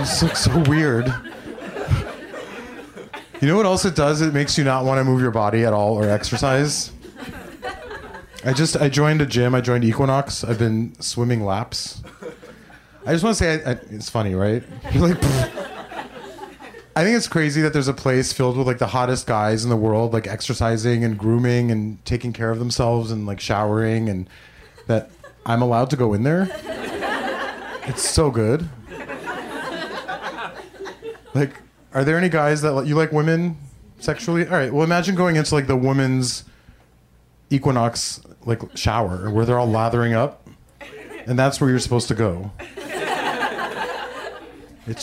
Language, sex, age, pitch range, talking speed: English, male, 30-49, 115-155 Hz, 165 wpm